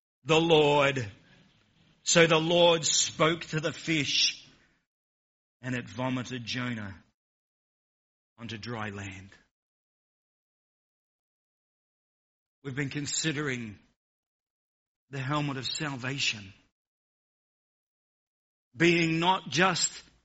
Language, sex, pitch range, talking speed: English, male, 155-200 Hz, 75 wpm